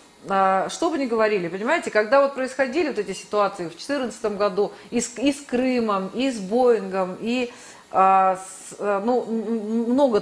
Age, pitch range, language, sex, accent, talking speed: 30-49, 195-255 Hz, Russian, female, native, 160 wpm